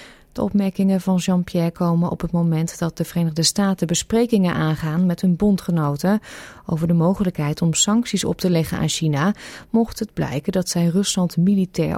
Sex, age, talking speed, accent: female, 30-49, 170 wpm, Dutch